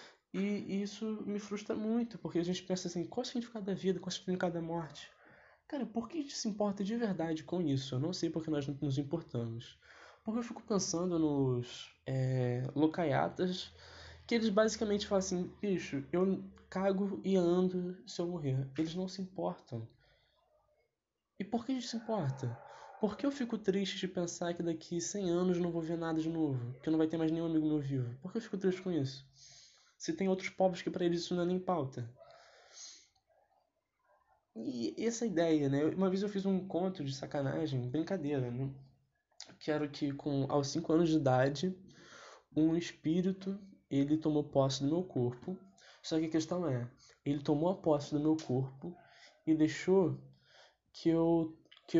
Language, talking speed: Portuguese, 190 wpm